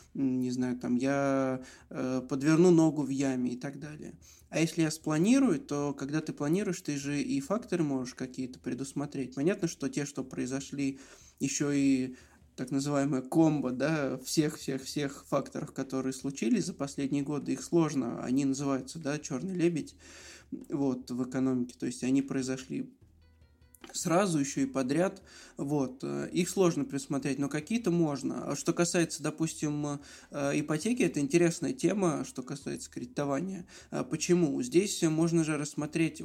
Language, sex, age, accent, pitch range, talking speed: Russian, male, 20-39, native, 135-165 Hz, 140 wpm